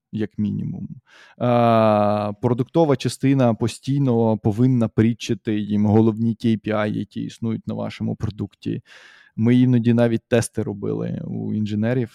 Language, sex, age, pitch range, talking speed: Ukrainian, male, 20-39, 110-130 Hz, 115 wpm